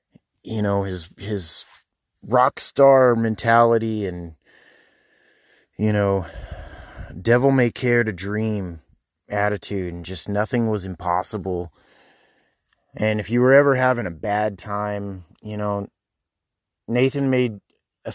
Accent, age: American, 30-49